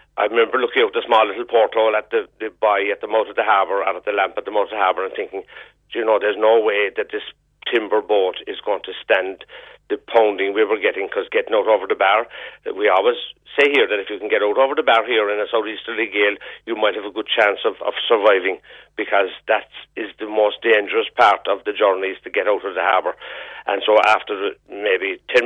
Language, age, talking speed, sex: English, 60-79, 245 wpm, male